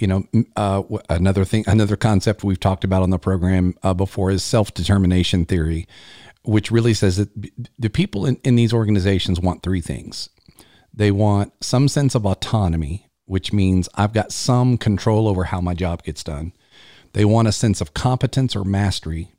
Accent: American